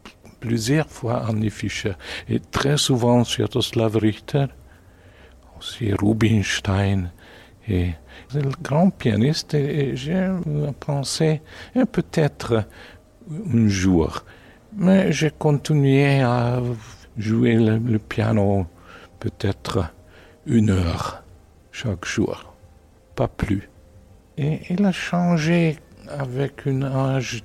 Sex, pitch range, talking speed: male, 95-140 Hz, 100 wpm